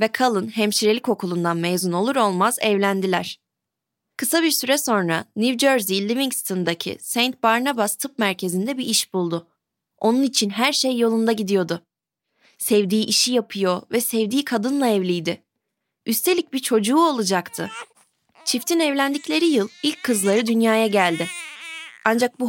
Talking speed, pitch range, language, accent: 130 wpm, 185-240 Hz, Turkish, native